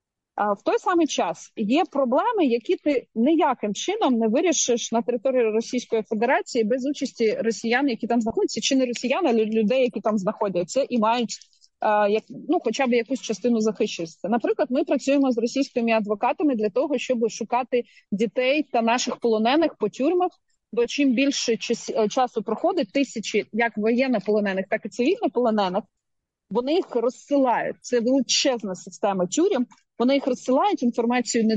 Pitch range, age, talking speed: 225-270 Hz, 30-49, 150 wpm